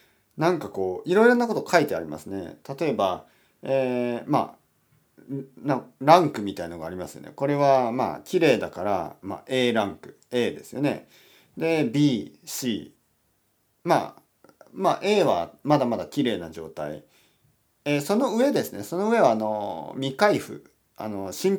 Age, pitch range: 40-59, 115-180 Hz